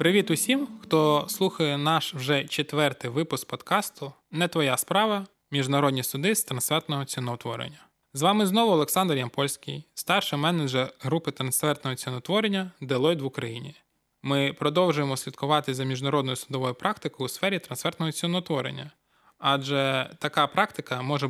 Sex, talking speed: male, 125 wpm